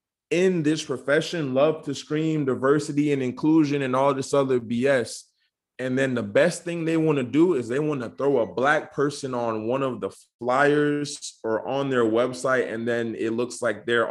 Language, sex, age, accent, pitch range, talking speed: English, male, 20-39, American, 115-150 Hz, 185 wpm